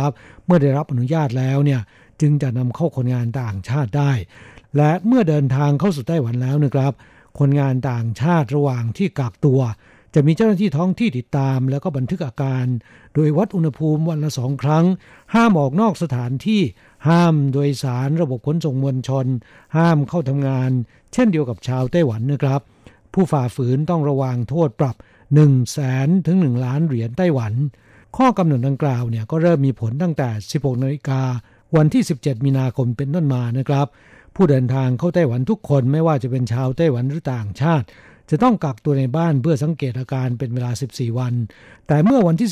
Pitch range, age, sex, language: 130-155 Hz, 60-79, male, Thai